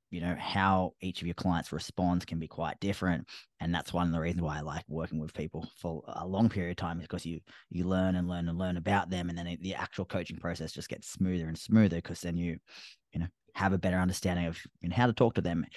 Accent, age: Australian, 20-39